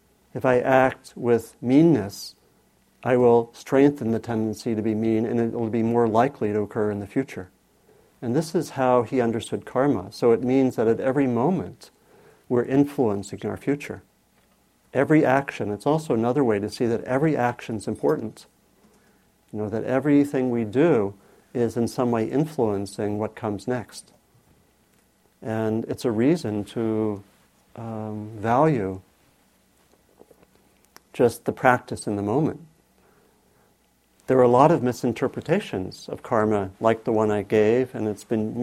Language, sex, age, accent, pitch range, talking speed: English, male, 50-69, American, 110-130 Hz, 150 wpm